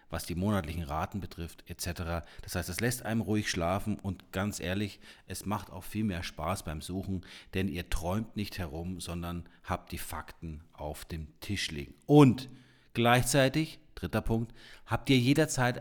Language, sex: German, male